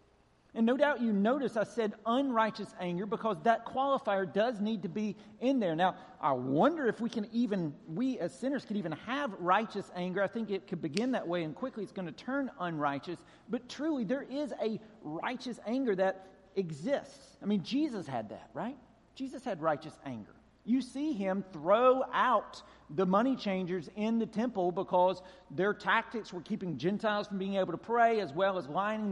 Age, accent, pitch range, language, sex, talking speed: 40-59, American, 170-230 Hz, English, male, 190 wpm